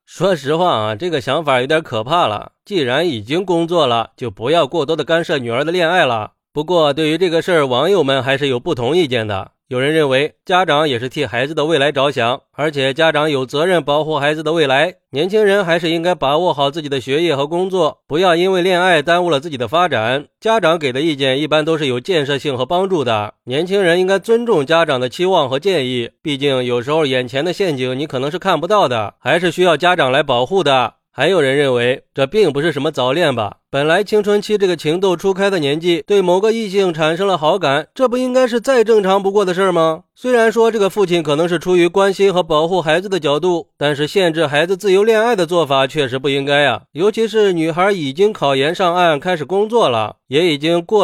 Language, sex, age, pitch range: Chinese, male, 20-39, 145-185 Hz